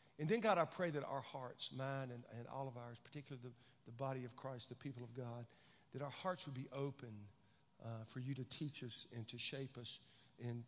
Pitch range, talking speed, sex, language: 125-165 Hz, 230 wpm, male, English